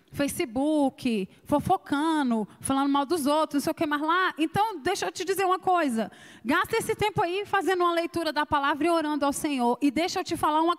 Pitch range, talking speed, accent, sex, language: 270-345 Hz, 210 wpm, Brazilian, female, Portuguese